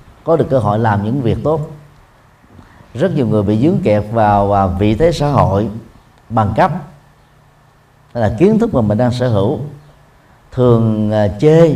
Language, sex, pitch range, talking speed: Vietnamese, male, 105-150 Hz, 160 wpm